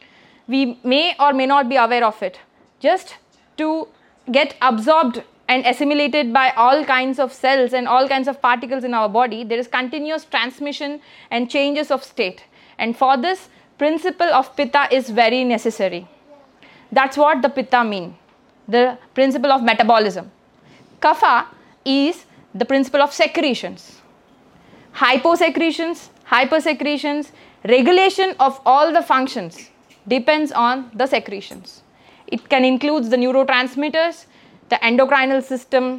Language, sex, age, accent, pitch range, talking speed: English, female, 20-39, Indian, 245-295 Hz, 130 wpm